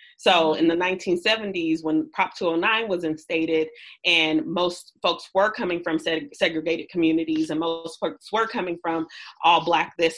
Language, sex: English, female